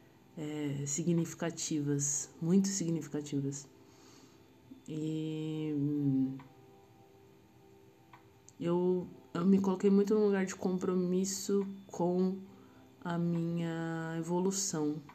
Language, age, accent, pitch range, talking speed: Portuguese, 20-39, Brazilian, 140-185 Hz, 70 wpm